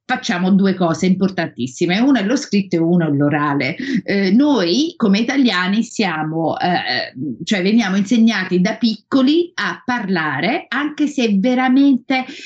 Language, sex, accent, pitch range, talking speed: Italian, female, native, 180-245 Hz, 135 wpm